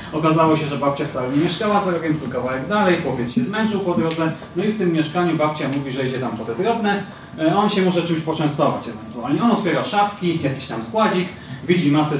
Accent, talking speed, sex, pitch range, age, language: native, 210 wpm, male, 140-190 Hz, 30-49, Polish